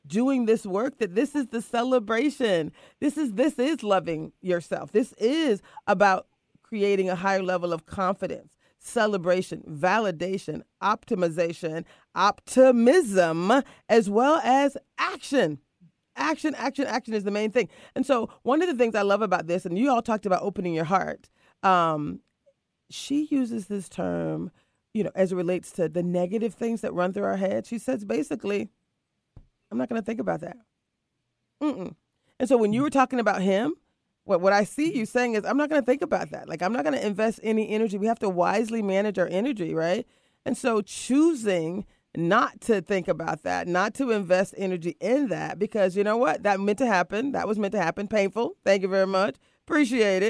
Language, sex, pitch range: English, female, 185-250 Hz